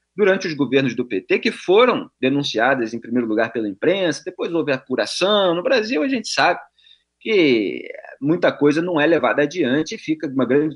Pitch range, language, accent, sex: 125-210 Hz, Portuguese, Brazilian, male